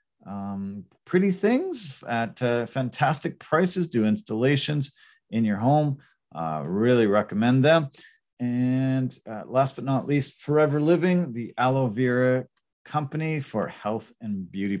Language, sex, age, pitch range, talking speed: English, male, 40-59, 120-175 Hz, 130 wpm